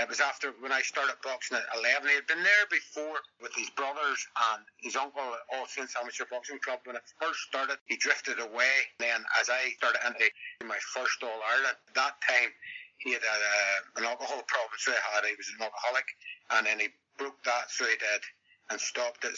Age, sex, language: 60-79, male, English